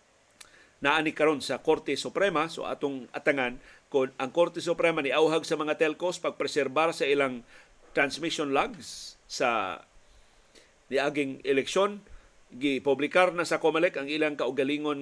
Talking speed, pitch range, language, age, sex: 125 wpm, 140-180 Hz, Filipino, 40-59, male